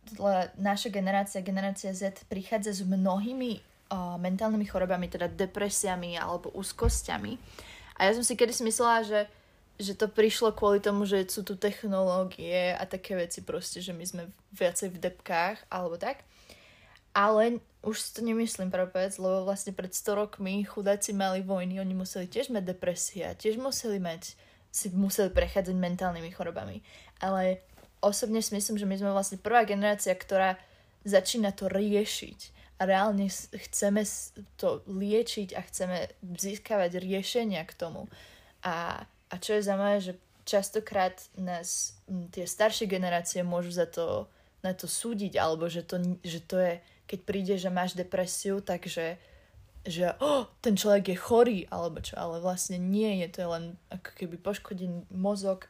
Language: Slovak